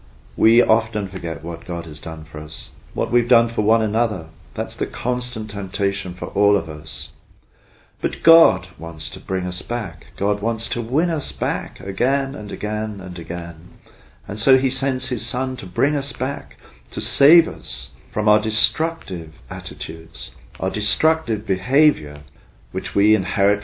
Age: 50-69